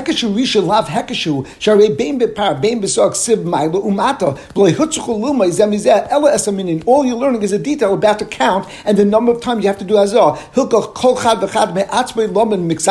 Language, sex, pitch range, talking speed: English, male, 200-240 Hz, 80 wpm